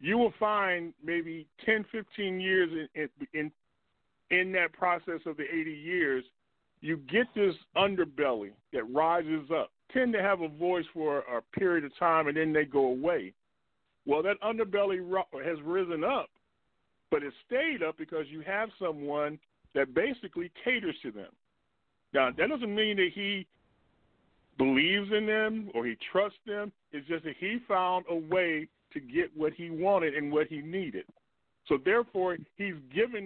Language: English